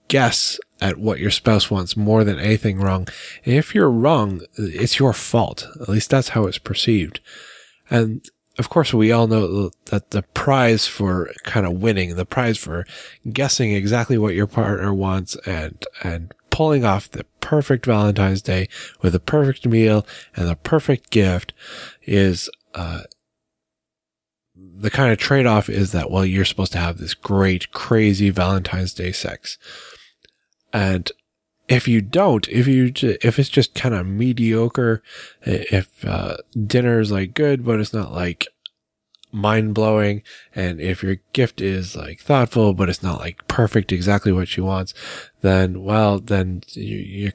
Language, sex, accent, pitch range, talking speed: English, male, American, 95-115 Hz, 155 wpm